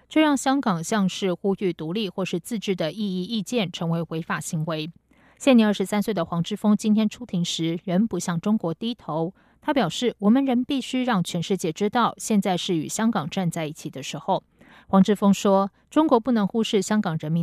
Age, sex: 20-39, female